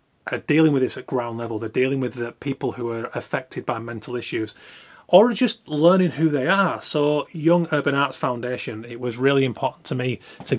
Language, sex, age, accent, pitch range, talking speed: English, male, 30-49, British, 120-150 Hz, 205 wpm